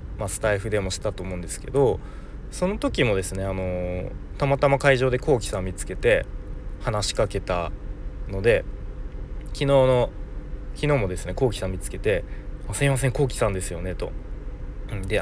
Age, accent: 20-39, native